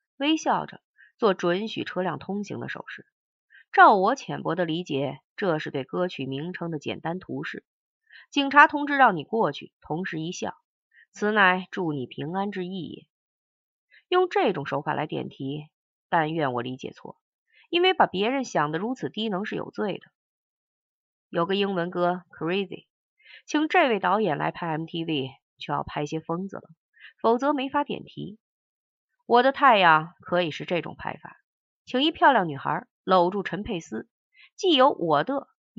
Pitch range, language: 165-250 Hz, Chinese